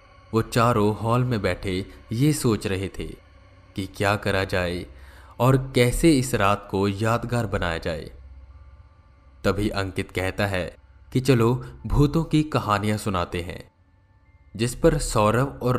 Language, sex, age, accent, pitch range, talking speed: Hindi, male, 20-39, native, 90-115 Hz, 135 wpm